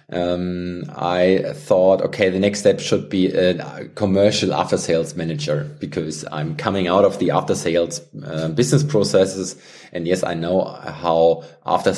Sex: male